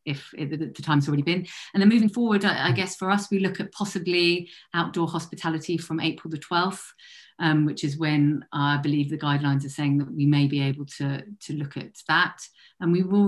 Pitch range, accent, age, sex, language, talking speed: 150-185 Hz, British, 40-59, female, English, 210 wpm